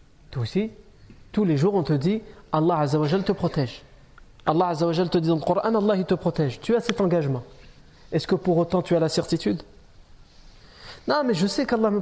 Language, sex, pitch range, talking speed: French, male, 170-235 Hz, 205 wpm